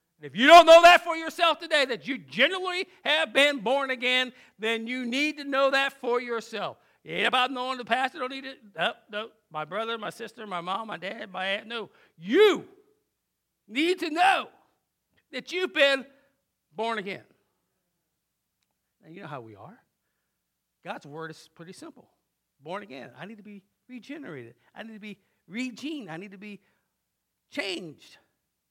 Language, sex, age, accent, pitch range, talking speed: English, male, 50-69, American, 160-260 Hz, 170 wpm